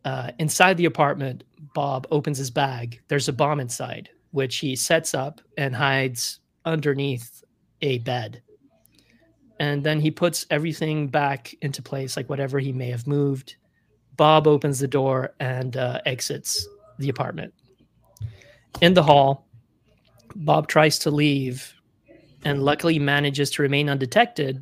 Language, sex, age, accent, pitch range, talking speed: English, male, 30-49, American, 130-150 Hz, 140 wpm